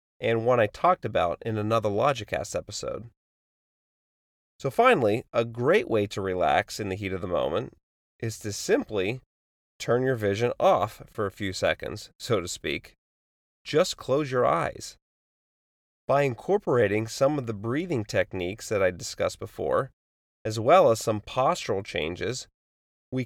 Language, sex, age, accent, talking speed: English, male, 30-49, American, 150 wpm